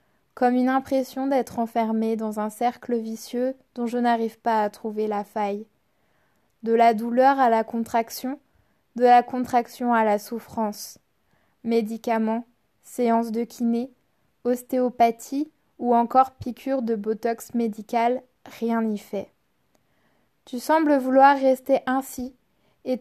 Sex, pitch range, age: female, 225-255 Hz, 20-39